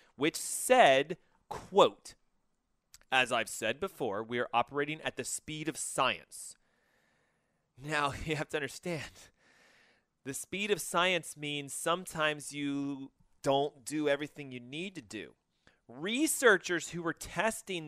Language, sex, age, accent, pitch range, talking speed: English, male, 30-49, American, 145-205 Hz, 130 wpm